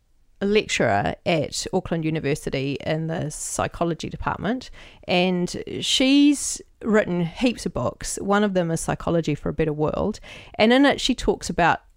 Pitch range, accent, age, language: 165-235 Hz, Australian, 40-59, English